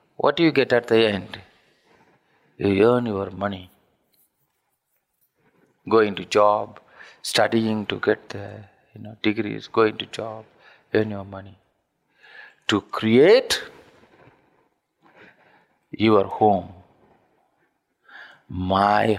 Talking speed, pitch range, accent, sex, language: 100 wpm, 100-140 Hz, Indian, male, English